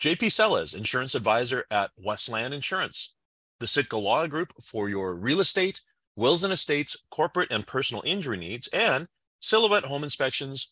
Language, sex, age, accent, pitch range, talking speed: English, male, 30-49, American, 95-145 Hz, 150 wpm